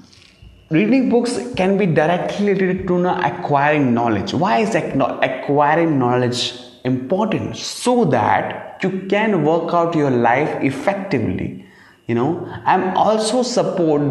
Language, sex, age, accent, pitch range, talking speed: English, male, 20-39, Indian, 130-190 Hz, 125 wpm